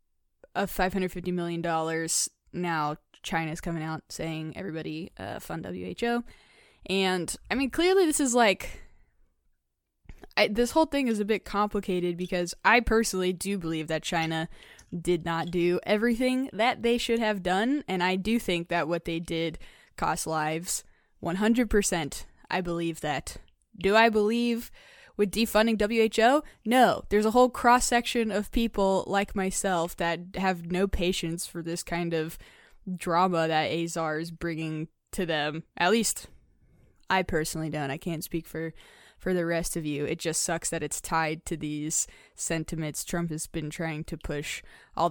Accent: American